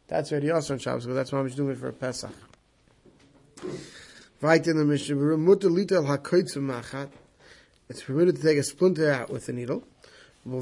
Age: 20-39